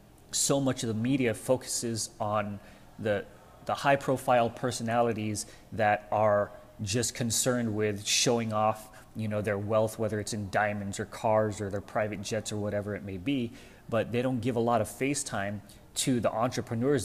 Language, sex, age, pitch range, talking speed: English, male, 30-49, 105-125 Hz, 175 wpm